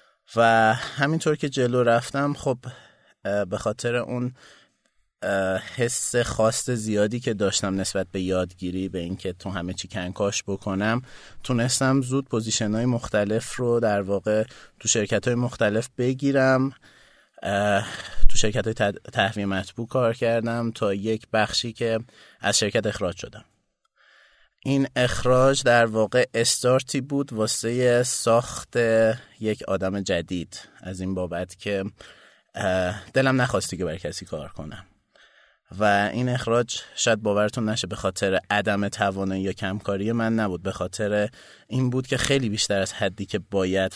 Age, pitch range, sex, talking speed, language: 30-49, 100-125 Hz, male, 130 wpm, Persian